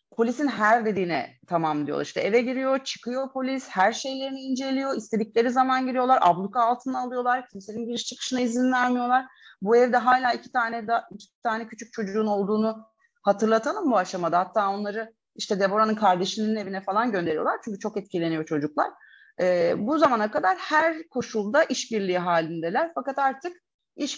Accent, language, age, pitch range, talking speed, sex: native, Turkish, 30-49, 195-265 Hz, 150 wpm, female